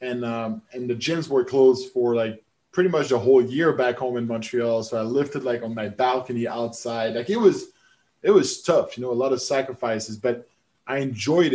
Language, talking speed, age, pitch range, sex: English, 215 wpm, 20-39, 115-130 Hz, male